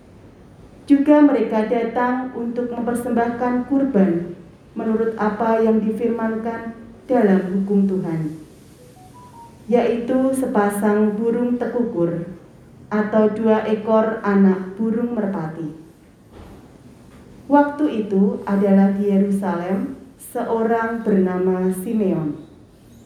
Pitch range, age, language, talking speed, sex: 190-230 Hz, 30-49, Indonesian, 80 wpm, female